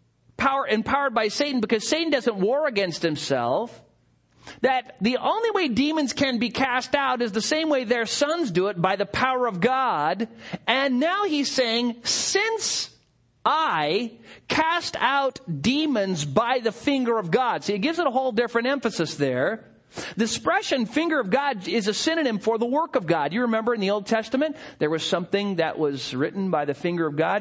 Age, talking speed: 40-59, 185 wpm